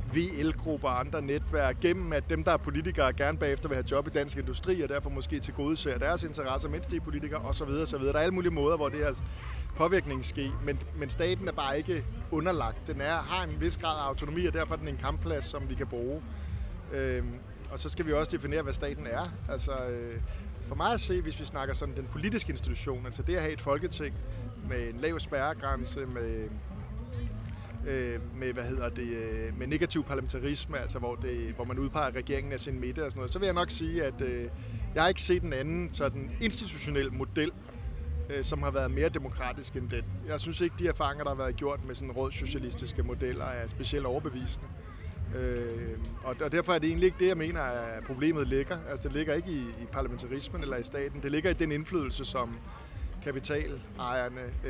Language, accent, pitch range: Danish, native, 85-140 Hz